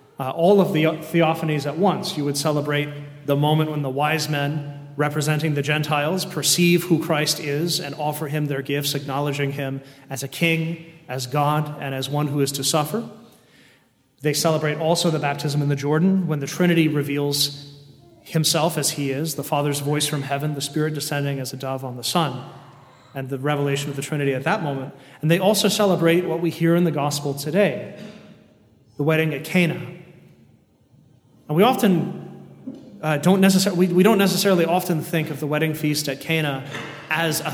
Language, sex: English, male